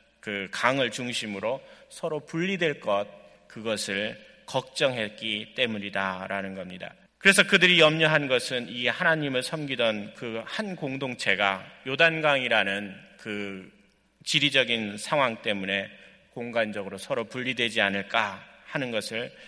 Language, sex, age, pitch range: Korean, male, 30-49, 100-135 Hz